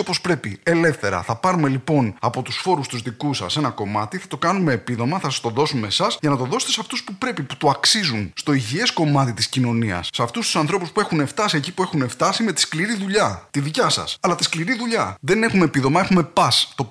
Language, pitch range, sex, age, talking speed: English, 130-205 Hz, male, 20-39, 240 wpm